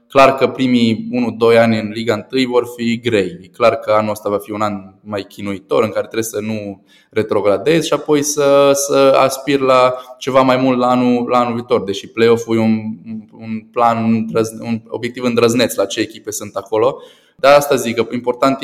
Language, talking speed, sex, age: Romanian, 195 wpm, male, 20-39